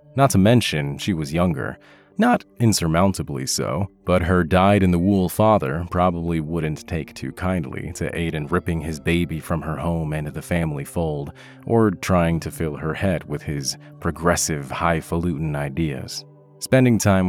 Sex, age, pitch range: male, 30-49, 75-100 Hz